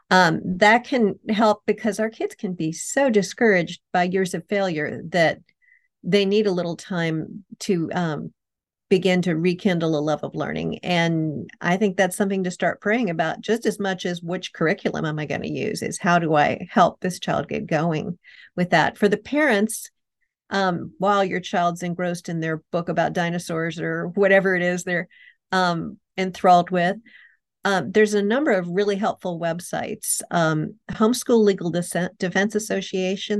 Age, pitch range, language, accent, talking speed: 50-69, 170-205 Hz, English, American, 170 wpm